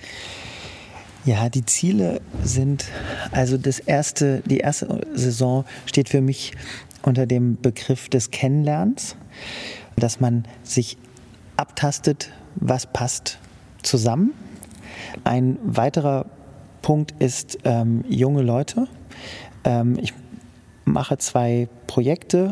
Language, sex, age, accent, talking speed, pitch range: German, male, 40-59, German, 100 wpm, 120-145 Hz